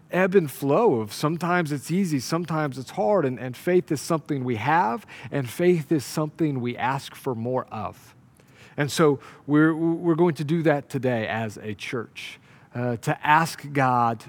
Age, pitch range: 40-59, 120-160 Hz